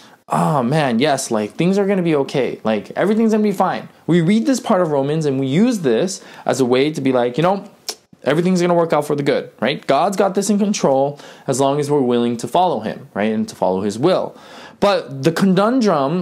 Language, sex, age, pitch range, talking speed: English, male, 20-39, 125-195 Hz, 240 wpm